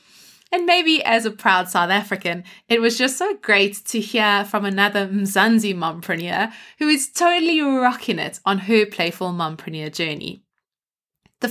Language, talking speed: English, 150 wpm